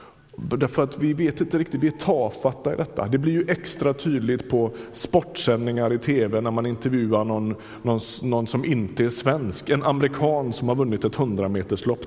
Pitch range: 115-150 Hz